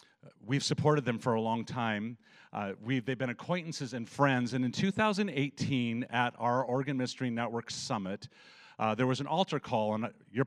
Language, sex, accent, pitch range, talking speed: English, male, American, 120-155 Hz, 180 wpm